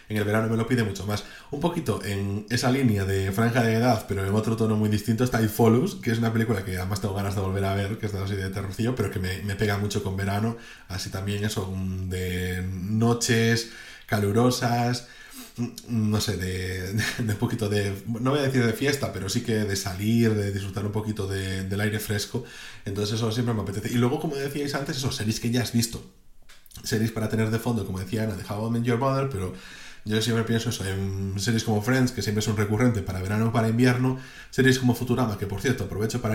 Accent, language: Spanish, Spanish